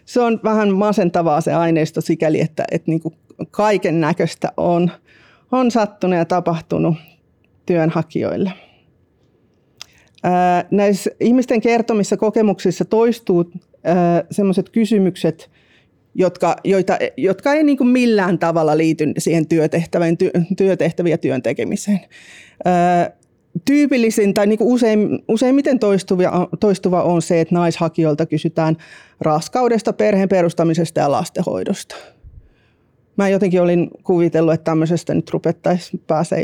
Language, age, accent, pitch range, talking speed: Finnish, 30-49, native, 165-205 Hz, 105 wpm